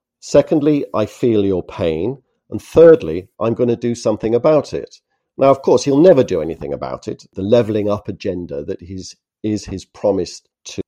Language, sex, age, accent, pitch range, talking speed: English, male, 50-69, British, 95-125 Hz, 175 wpm